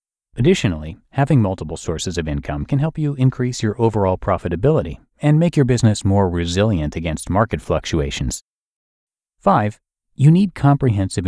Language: English